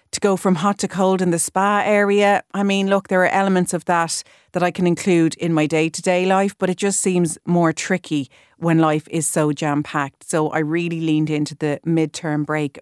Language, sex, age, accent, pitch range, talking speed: English, female, 40-59, Irish, 150-190 Hz, 210 wpm